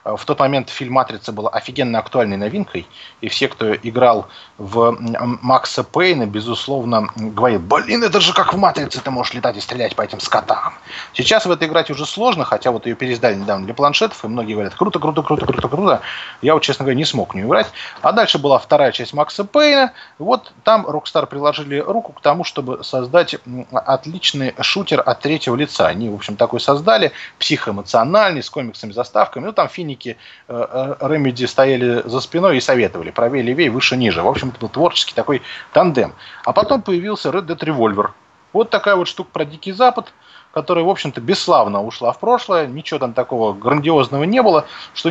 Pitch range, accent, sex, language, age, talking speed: 120-165 Hz, native, male, Russian, 20-39, 180 wpm